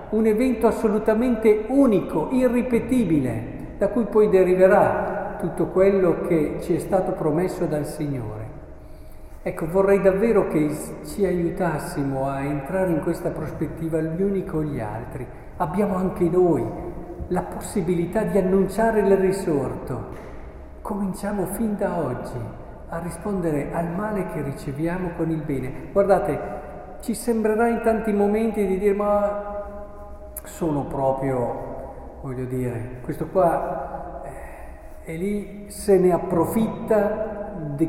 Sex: male